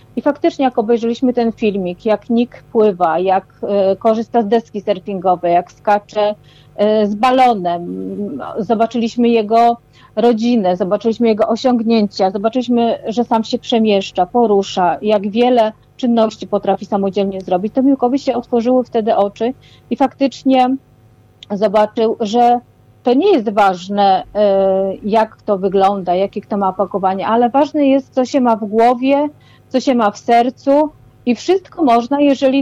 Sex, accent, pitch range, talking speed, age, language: female, native, 205-255 Hz, 140 wpm, 40-59, Polish